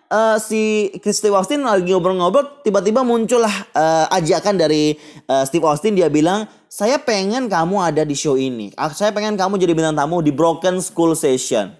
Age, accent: 20-39, native